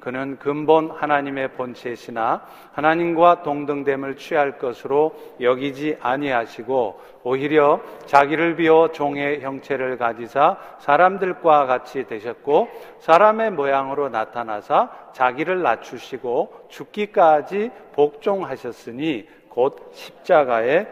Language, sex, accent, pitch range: Korean, male, native, 135-200 Hz